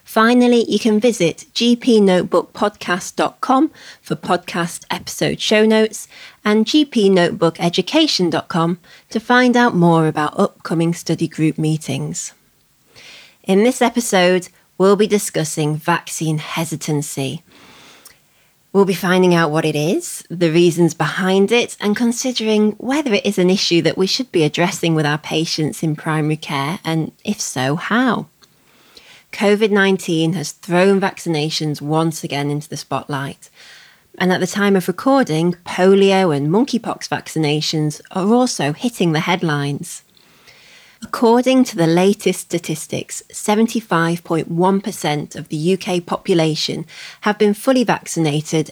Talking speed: 125 wpm